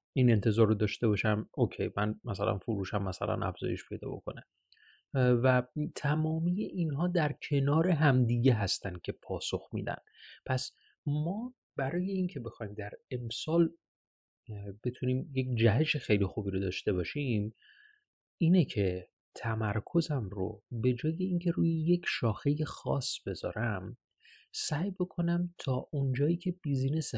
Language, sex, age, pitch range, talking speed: Persian, male, 30-49, 110-150 Hz, 125 wpm